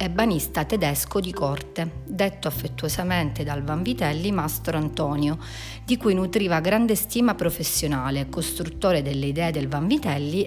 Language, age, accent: Italian, 40-59, native